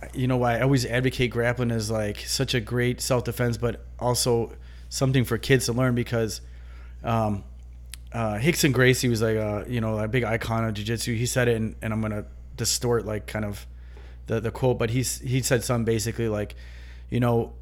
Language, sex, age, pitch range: English, male, 30-49, 105-125 Hz